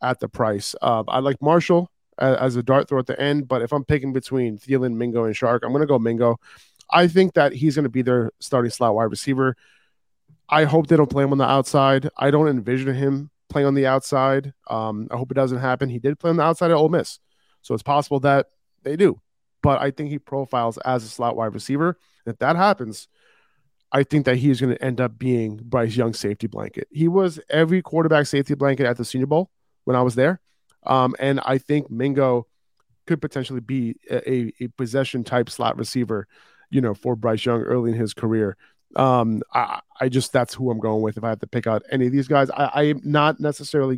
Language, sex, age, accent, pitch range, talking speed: English, male, 20-39, American, 120-140 Hz, 225 wpm